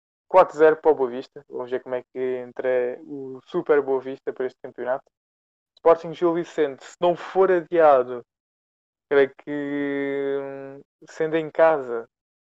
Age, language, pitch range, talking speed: 20-39, Portuguese, 130-155 Hz, 145 wpm